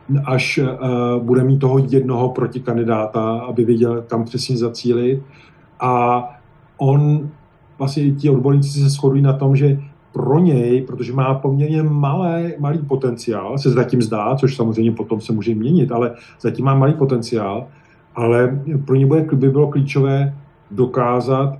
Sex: male